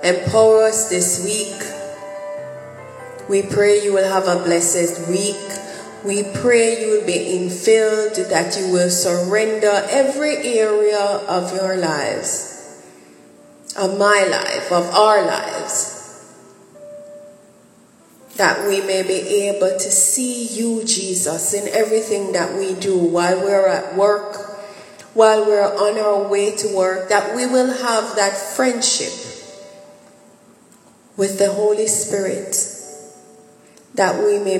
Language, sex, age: English, female, 30-49